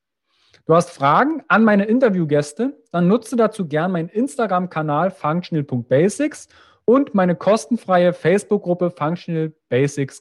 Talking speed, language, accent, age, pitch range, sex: 110 wpm, German, German, 40-59, 145-220 Hz, male